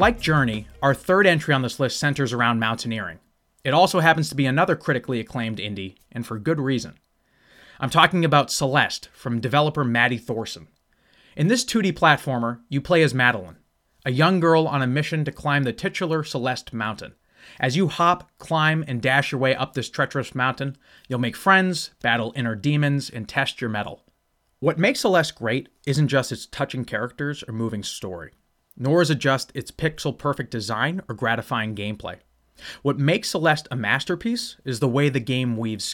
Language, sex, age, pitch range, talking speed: English, male, 30-49, 115-155 Hz, 180 wpm